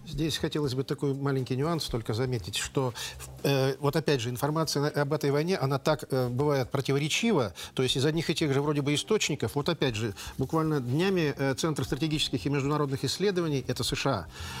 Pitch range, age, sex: 135-165 Hz, 50-69, male